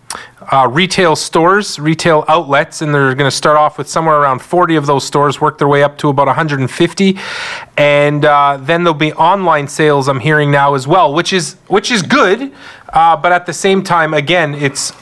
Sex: male